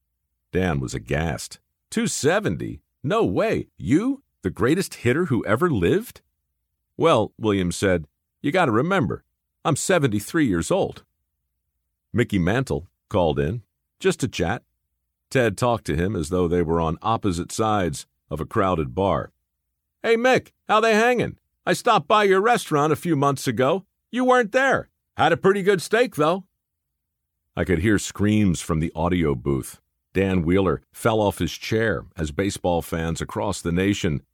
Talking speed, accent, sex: 155 wpm, American, male